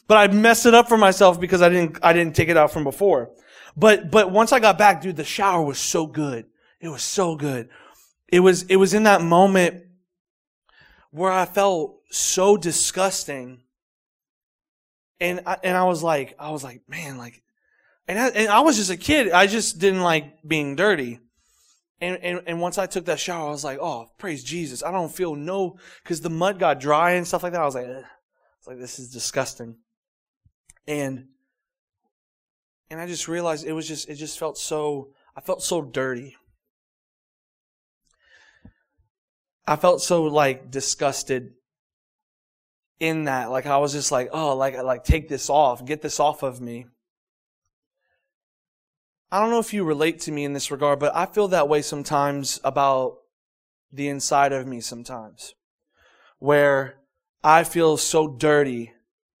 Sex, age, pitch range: male, 20-39, 135-185 Hz